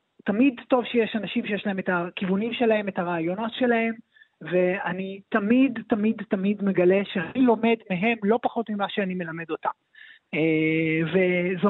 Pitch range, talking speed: 175-235 Hz, 140 wpm